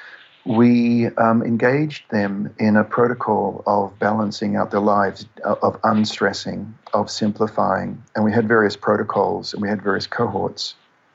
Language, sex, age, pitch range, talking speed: English, male, 50-69, 100-115 Hz, 140 wpm